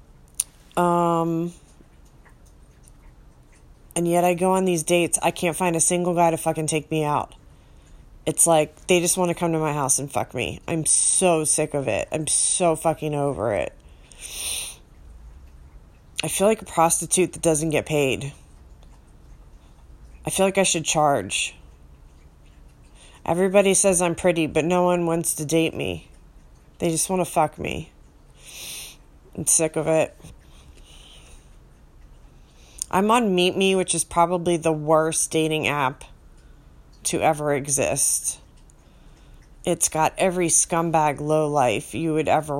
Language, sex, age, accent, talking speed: English, female, 30-49, American, 140 wpm